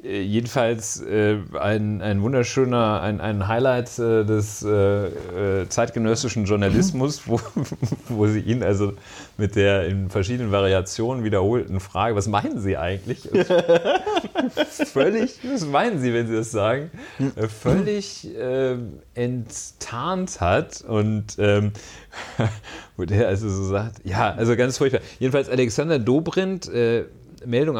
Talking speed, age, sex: 110 wpm, 40-59, male